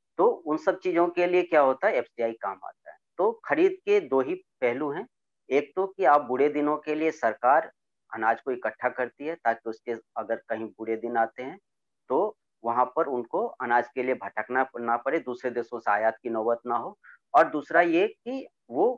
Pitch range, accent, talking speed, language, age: 120-170 Hz, native, 205 wpm, Hindi, 40-59